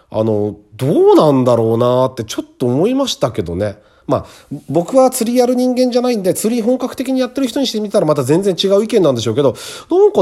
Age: 40-59